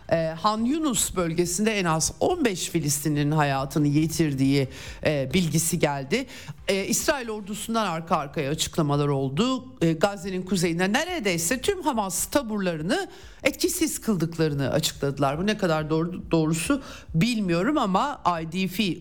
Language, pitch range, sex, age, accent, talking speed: Turkish, 160-225 Hz, male, 50-69, native, 120 wpm